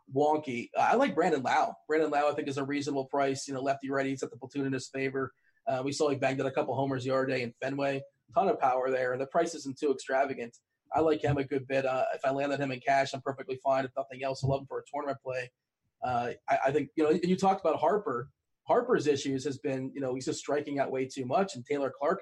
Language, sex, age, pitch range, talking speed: English, male, 30-49, 130-150 Hz, 275 wpm